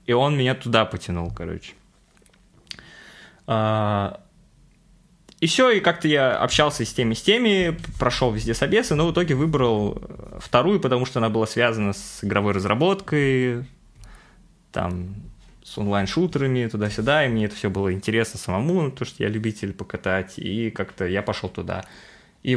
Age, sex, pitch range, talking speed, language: 20-39, male, 100-130 Hz, 145 wpm, Russian